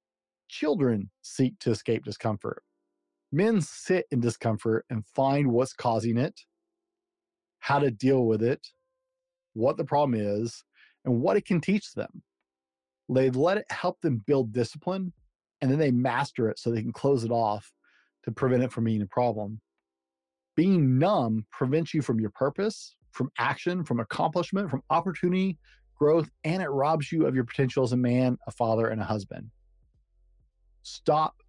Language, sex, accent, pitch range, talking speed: English, male, American, 110-150 Hz, 160 wpm